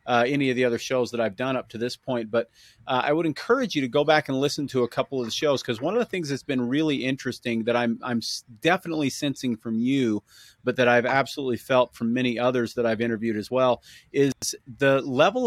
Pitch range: 120-140 Hz